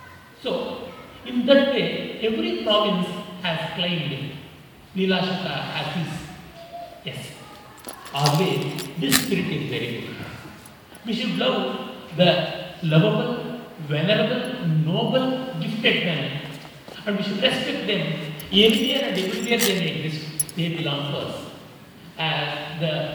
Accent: native